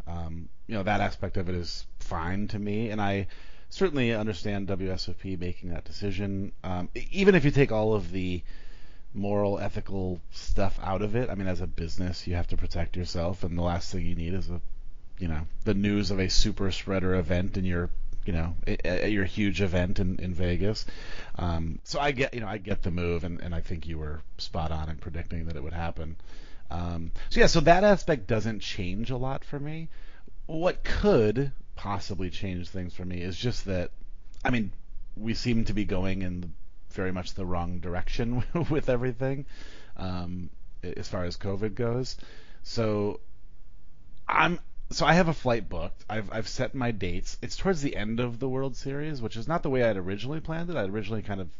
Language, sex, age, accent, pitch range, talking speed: English, male, 30-49, American, 90-110 Hz, 205 wpm